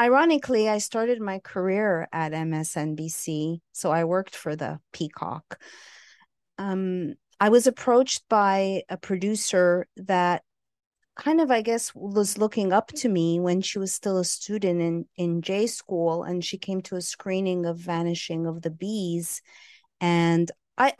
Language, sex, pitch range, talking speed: English, female, 165-200 Hz, 150 wpm